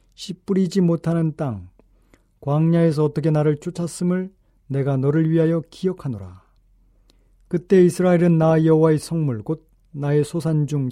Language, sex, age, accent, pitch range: Korean, male, 40-59, native, 105-170 Hz